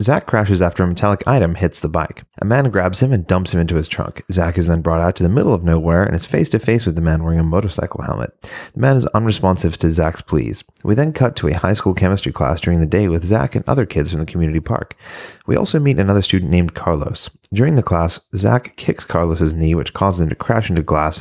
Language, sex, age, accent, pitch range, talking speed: English, male, 30-49, American, 80-100 Hz, 250 wpm